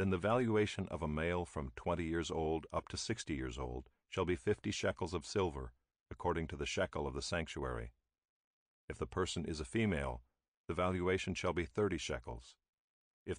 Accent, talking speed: American, 185 wpm